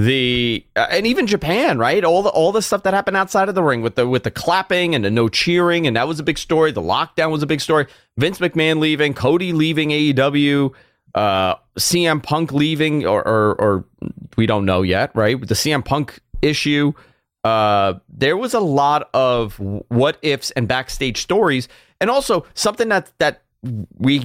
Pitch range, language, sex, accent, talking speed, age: 120-160 Hz, English, male, American, 190 wpm, 30-49